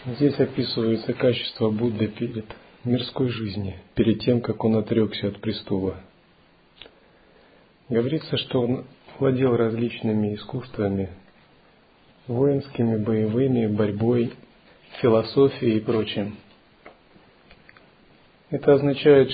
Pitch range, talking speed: 110-130 Hz, 85 wpm